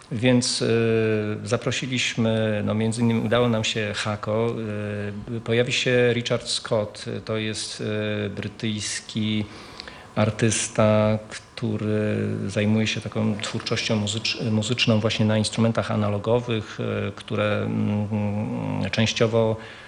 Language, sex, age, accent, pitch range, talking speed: Polish, male, 40-59, native, 105-115 Hz, 90 wpm